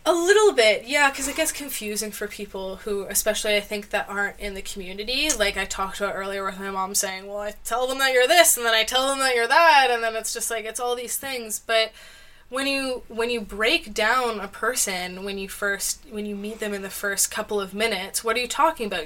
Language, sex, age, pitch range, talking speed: English, female, 20-39, 200-235 Hz, 250 wpm